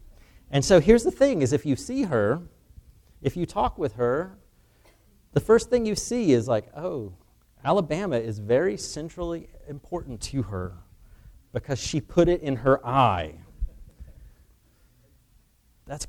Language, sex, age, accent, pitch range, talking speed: English, male, 30-49, American, 110-155 Hz, 140 wpm